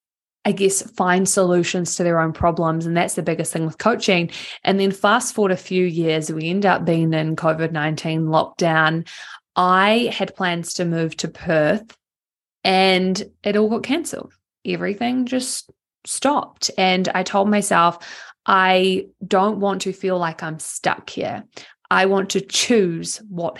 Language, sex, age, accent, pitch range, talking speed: English, female, 20-39, Australian, 170-195 Hz, 160 wpm